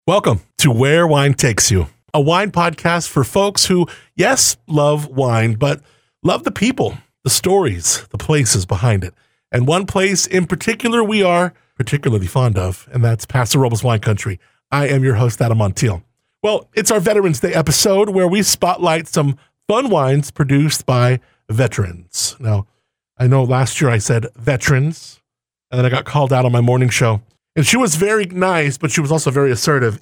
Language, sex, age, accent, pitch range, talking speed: English, male, 40-59, American, 120-165 Hz, 180 wpm